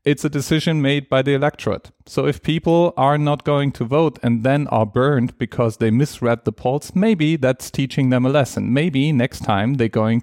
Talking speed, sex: 205 wpm, male